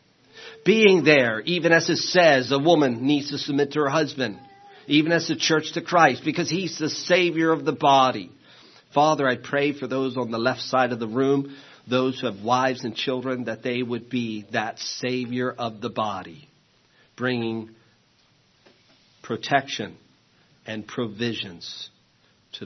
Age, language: 50-69, English